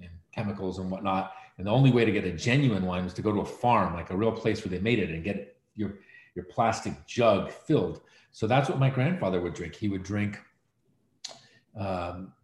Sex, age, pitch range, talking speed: male, 40-59, 95-115 Hz, 210 wpm